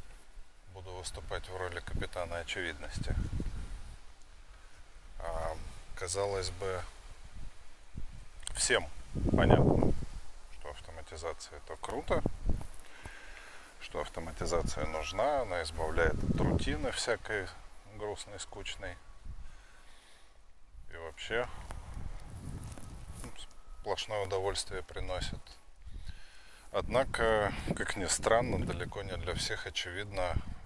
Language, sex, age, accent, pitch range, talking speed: Russian, male, 20-39, native, 80-95 Hz, 70 wpm